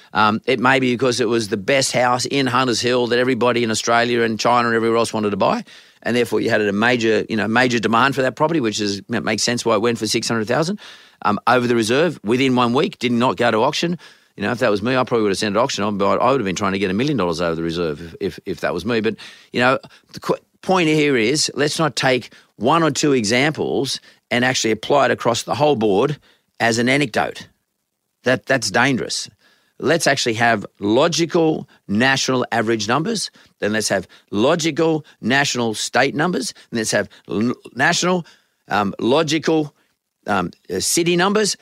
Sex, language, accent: male, English, Australian